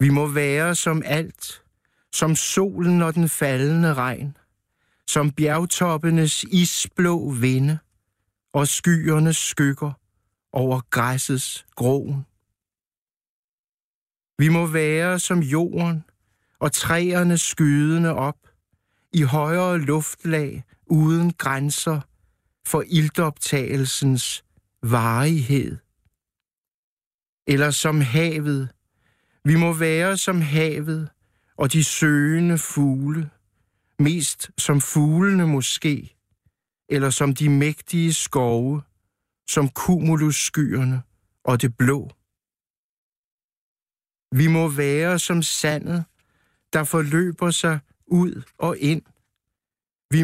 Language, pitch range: Danish, 130-160 Hz